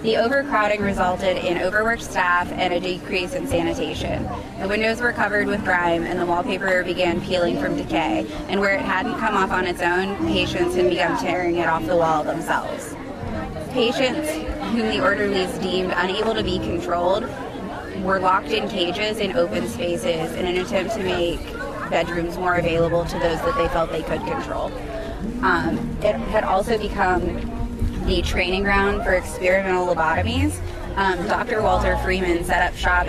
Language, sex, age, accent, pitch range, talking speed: English, female, 20-39, American, 170-205 Hz, 165 wpm